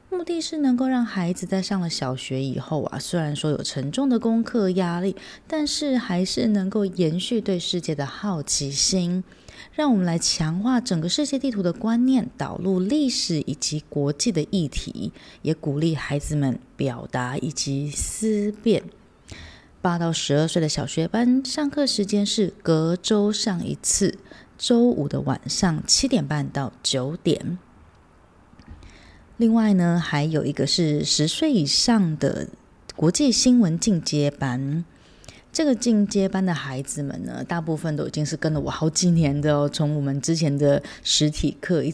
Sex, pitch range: female, 150-220 Hz